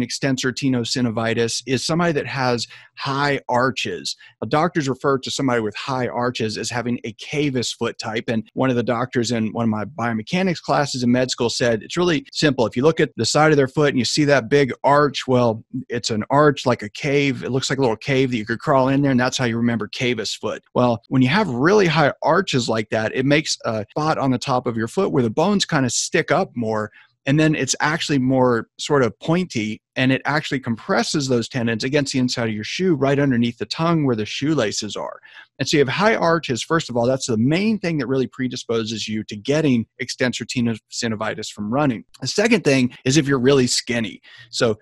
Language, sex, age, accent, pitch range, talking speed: English, male, 40-59, American, 120-145 Hz, 225 wpm